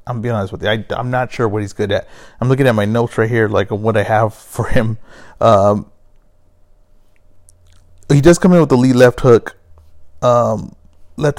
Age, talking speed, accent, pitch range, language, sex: 30-49, 200 wpm, American, 110-140 Hz, English, male